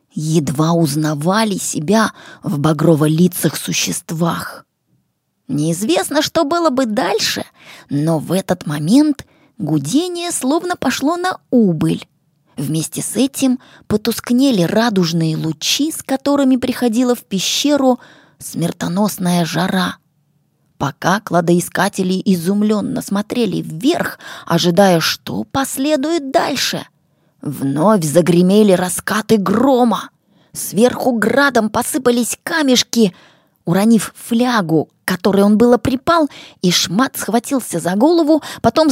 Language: Russian